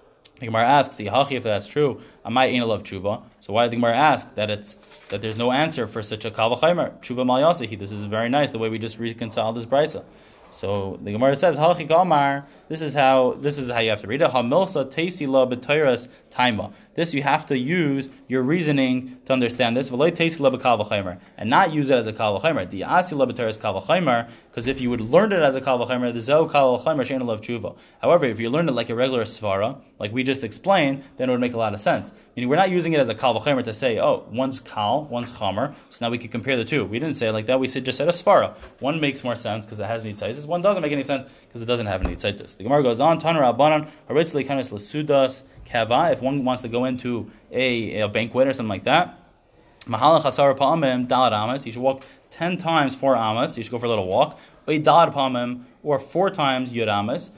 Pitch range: 115-145 Hz